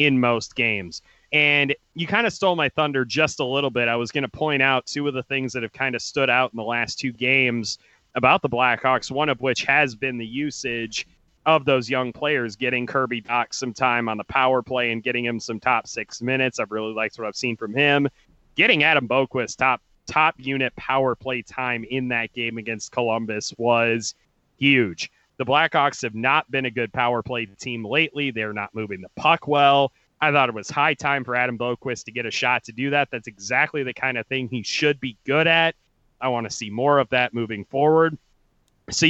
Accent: American